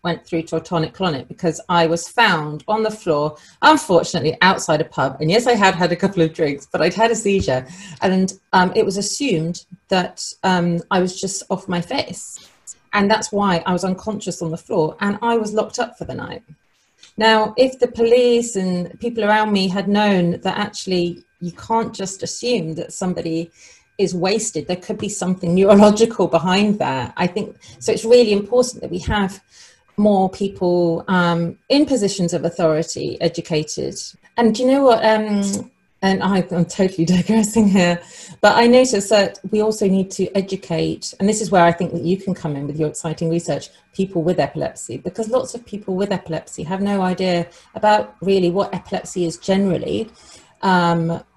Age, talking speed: 30-49, 185 wpm